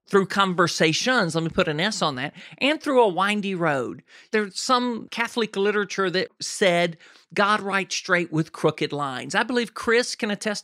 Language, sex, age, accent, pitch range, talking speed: English, male, 50-69, American, 160-230 Hz, 175 wpm